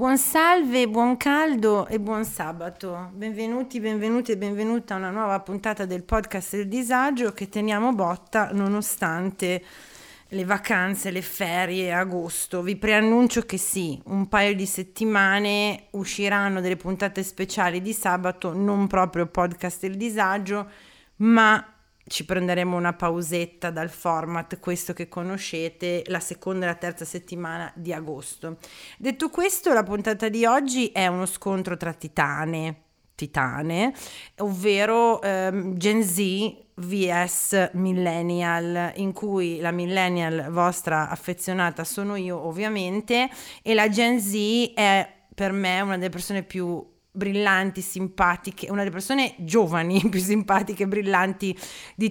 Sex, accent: female, native